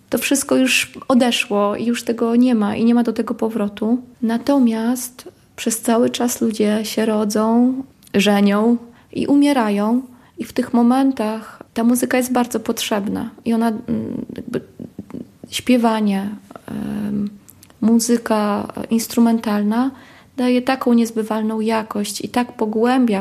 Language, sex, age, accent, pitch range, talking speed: Polish, female, 20-39, native, 210-245 Hz, 120 wpm